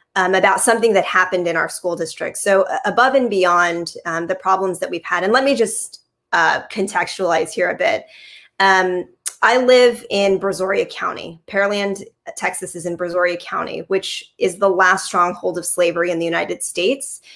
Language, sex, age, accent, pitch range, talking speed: English, female, 20-39, American, 180-205 Hz, 180 wpm